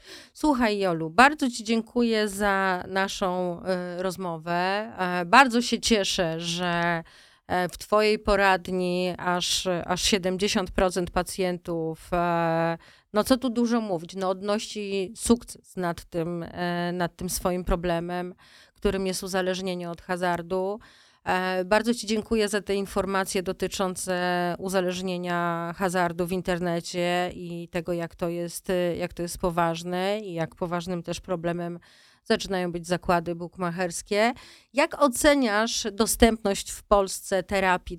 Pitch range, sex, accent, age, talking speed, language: 175-200 Hz, female, native, 30-49, 110 wpm, Polish